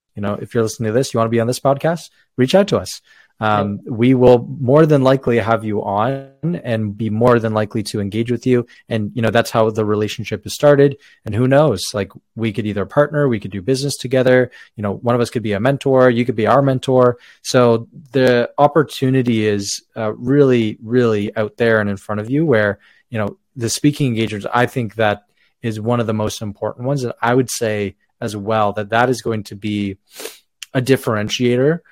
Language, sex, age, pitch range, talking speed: English, male, 20-39, 105-125 Hz, 220 wpm